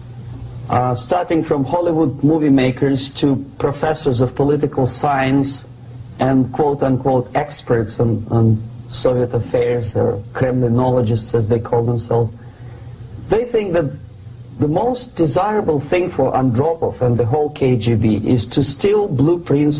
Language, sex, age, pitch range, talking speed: English, male, 40-59, 120-140 Hz, 125 wpm